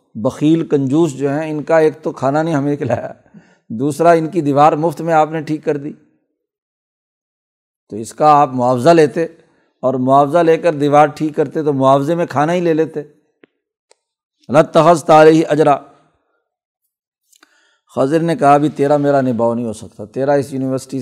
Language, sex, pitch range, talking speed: Urdu, male, 135-165 Hz, 170 wpm